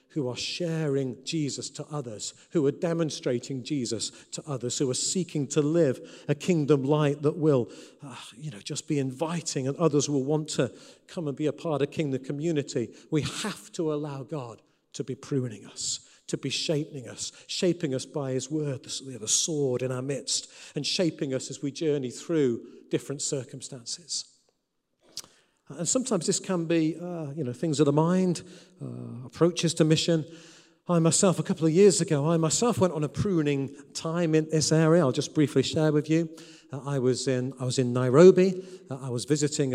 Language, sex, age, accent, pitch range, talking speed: English, male, 40-59, British, 135-165 Hz, 190 wpm